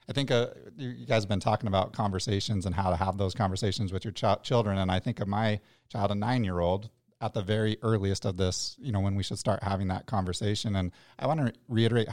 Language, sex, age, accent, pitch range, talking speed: English, male, 30-49, American, 95-115 Hz, 235 wpm